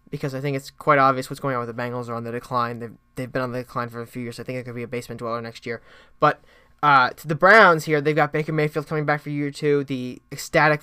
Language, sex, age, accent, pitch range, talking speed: English, male, 20-39, American, 135-150 Hz, 295 wpm